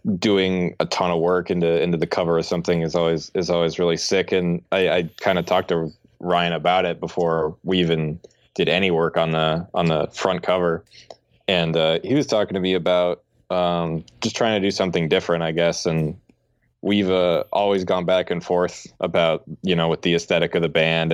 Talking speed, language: 205 wpm, English